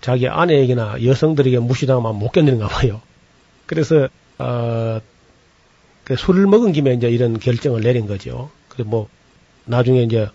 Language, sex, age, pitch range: Korean, male, 40-59, 115-145 Hz